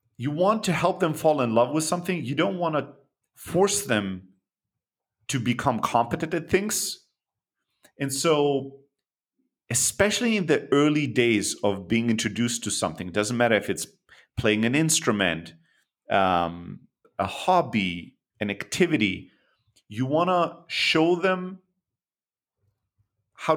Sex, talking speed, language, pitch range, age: male, 130 wpm, English, 115-175 Hz, 40-59